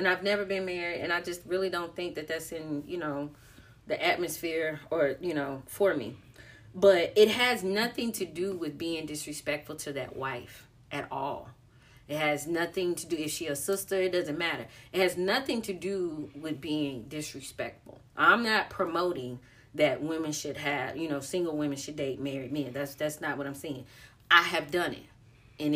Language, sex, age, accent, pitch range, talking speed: English, female, 30-49, American, 140-180 Hz, 195 wpm